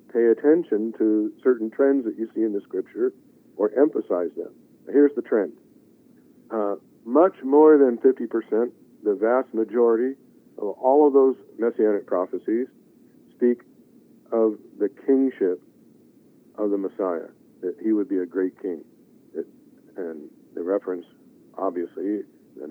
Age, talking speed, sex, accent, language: 50-69, 130 wpm, male, American, English